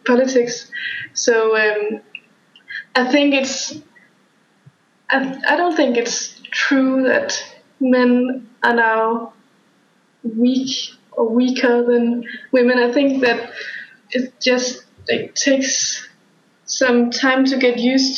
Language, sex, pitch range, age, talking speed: English, female, 235-265 Hz, 20-39, 105 wpm